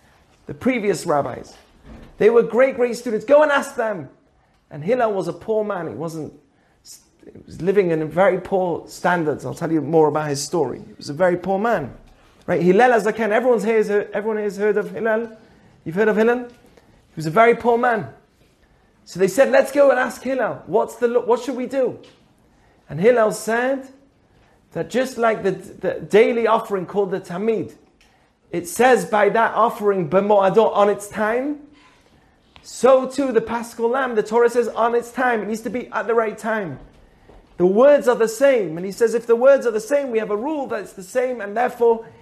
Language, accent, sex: English, British, male